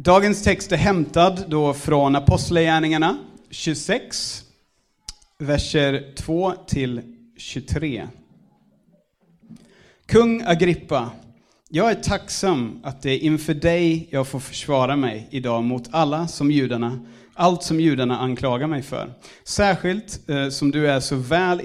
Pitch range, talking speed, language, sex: 125-165 Hz, 120 wpm, Swedish, male